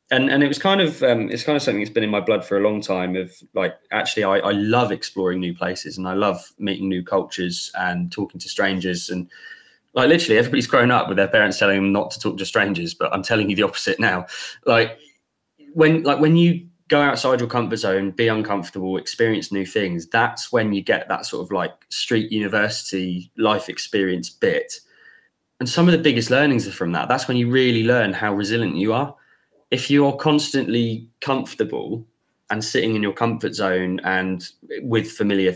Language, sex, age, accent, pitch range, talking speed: English, male, 20-39, British, 95-130 Hz, 205 wpm